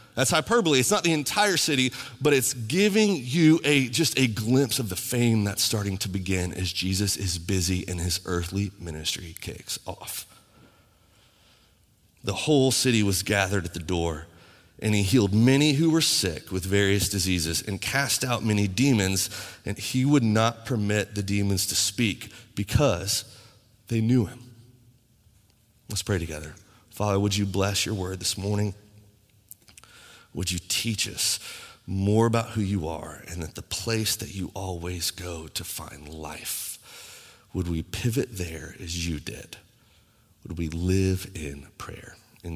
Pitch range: 95-130 Hz